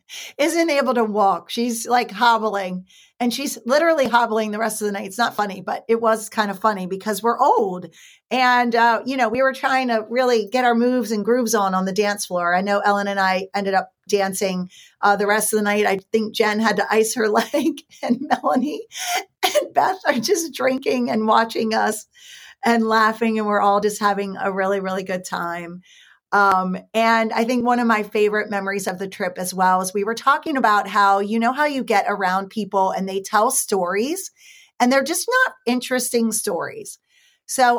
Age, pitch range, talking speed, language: 40-59, 205-265 Hz, 205 wpm, English